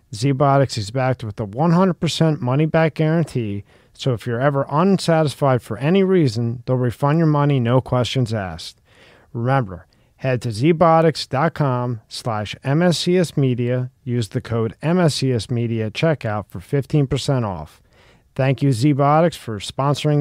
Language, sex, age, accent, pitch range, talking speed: English, male, 40-59, American, 115-160 Hz, 130 wpm